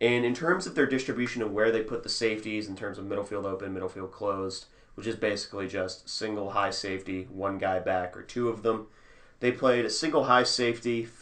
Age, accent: 30-49, American